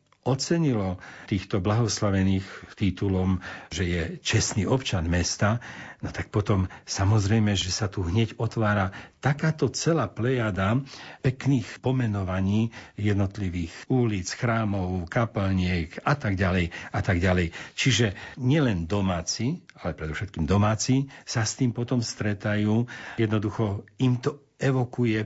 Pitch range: 95-120 Hz